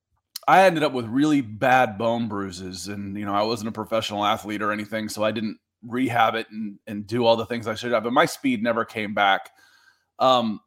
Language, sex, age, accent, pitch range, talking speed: English, male, 30-49, American, 110-135 Hz, 220 wpm